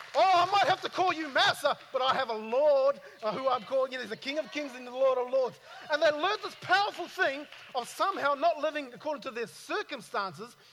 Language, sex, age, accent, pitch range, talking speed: English, male, 40-59, Australian, 175-275 Hz, 235 wpm